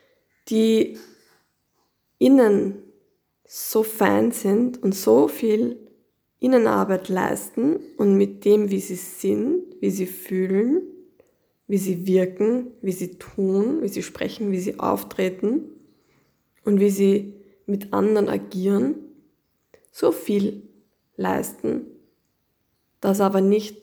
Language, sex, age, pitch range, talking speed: German, female, 20-39, 185-230 Hz, 105 wpm